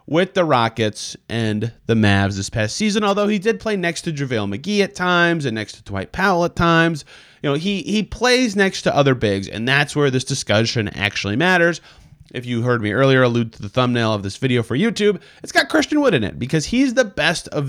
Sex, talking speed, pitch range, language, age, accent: male, 225 wpm, 125-185 Hz, English, 30-49, American